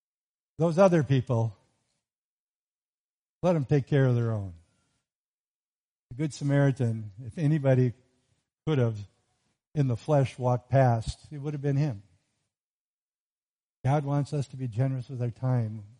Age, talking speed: 50-69, 140 wpm